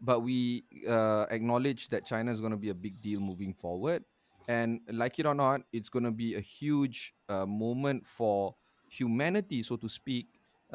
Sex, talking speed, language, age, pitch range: male, 185 wpm, Malay, 30-49, 110-130 Hz